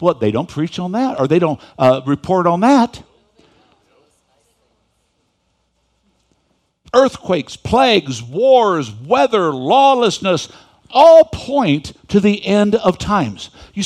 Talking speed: 115 wpm